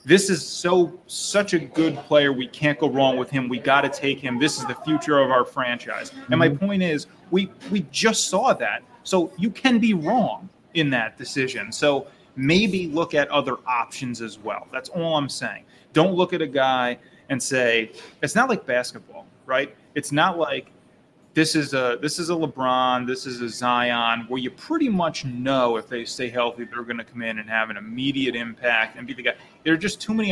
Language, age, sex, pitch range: English, 30-49, male, 125-160 Hz